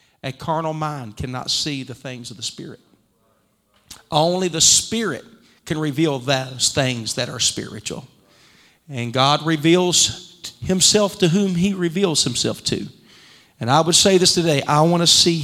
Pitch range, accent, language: 150-210 Hz, American, English